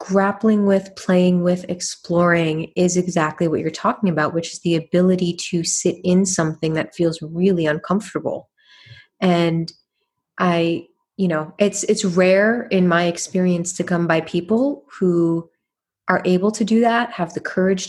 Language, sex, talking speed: English, female, 155 wpm